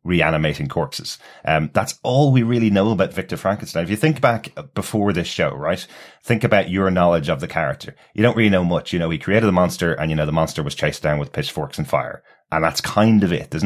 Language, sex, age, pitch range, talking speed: English, male, 30-49, 80-95 Hz, 245 wpm